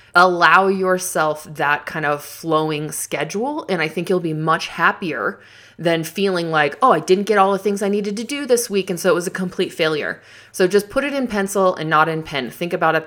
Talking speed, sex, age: 230 wpm, female, 30-49